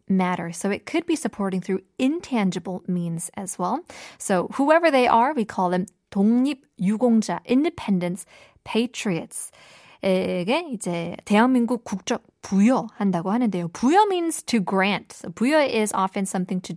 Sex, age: female, 20-39